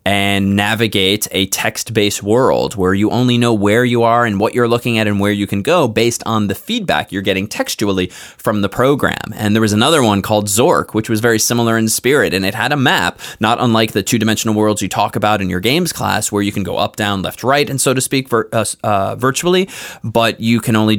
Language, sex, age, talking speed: English, male, 20-39, 230 wpm